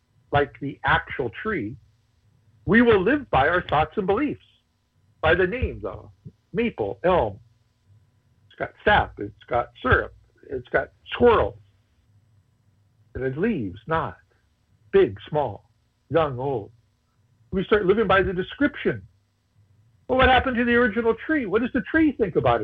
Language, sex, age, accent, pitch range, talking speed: English, male, 60-79, American, 105-155 Hz, 145 wpm